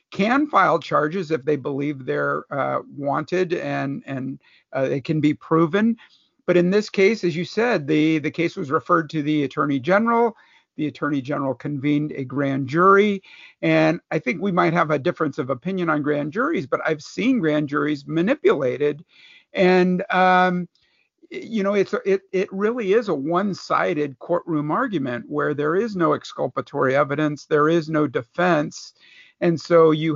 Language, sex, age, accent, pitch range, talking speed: English, male, 50-69, American, 150-185 Hz, 165 wpm